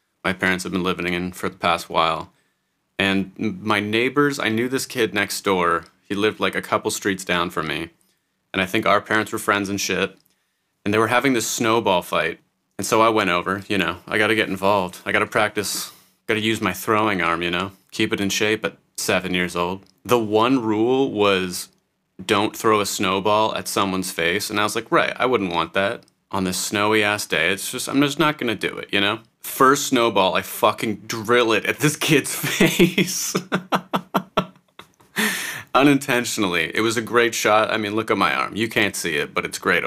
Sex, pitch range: male, 95-115 Hz